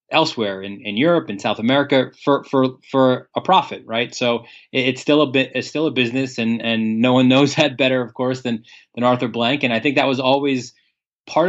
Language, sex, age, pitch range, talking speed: English, male, 20-39, 120-140 Hz, 230 wpm